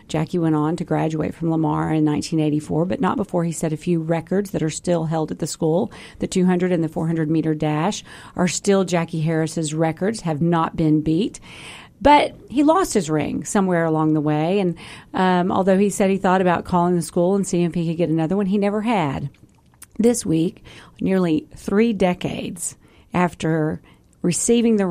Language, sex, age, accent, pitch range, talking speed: English, female, 40-59, American, 155-185 Hz, 190 wpm